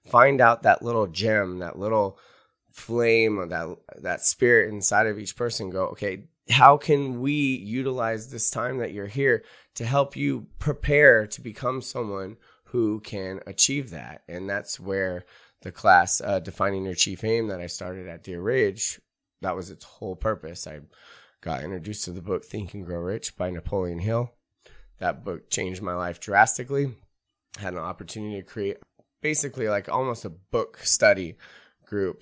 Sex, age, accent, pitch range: male, 20-39, American, 90-110 Hz